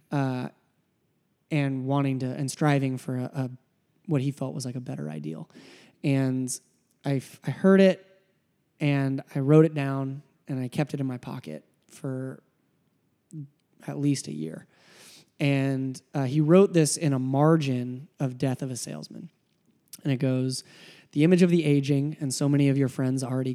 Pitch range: 130-150 Hz